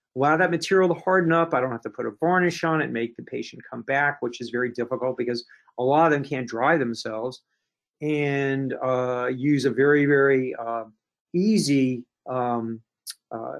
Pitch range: 125-155 Hz